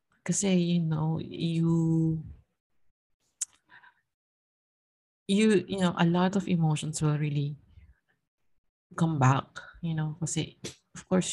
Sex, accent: female, Filipino